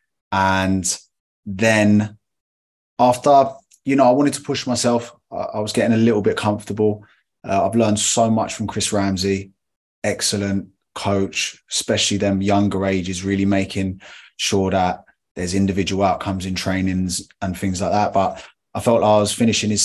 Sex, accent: male, British